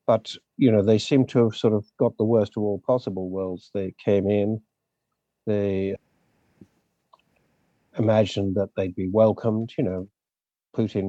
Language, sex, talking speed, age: English, male, 150 wpm, 50-69